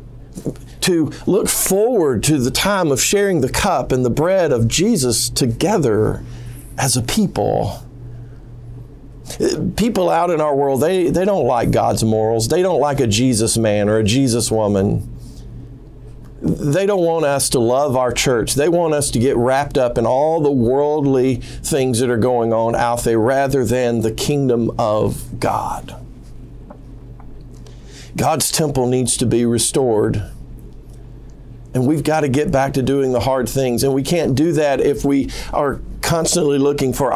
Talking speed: 160 wpm